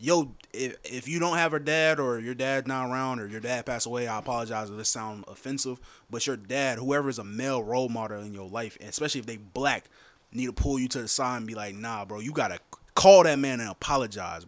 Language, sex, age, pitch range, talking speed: English, male, 20-39, 115-170 Hz, 250 wpm